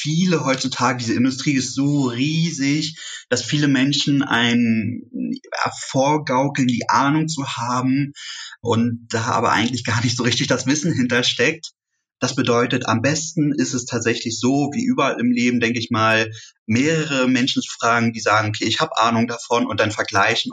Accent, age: German, 30-49